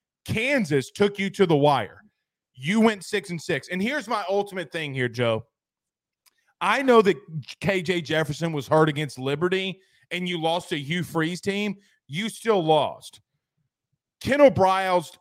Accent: American